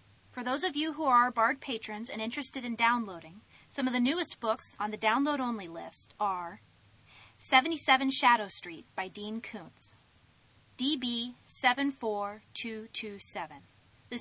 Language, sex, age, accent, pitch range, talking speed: English, female, 30-49, American, 200-255 Hz, 130 wpm